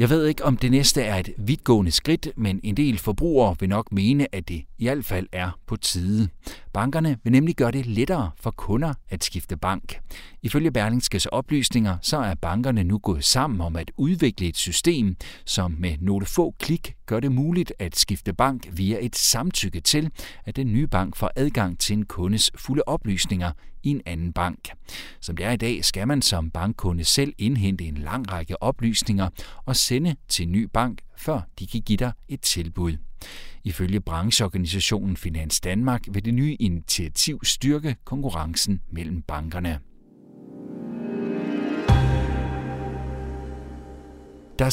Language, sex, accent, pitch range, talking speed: Danish, male, native, 90-130 Hz, 160 wpm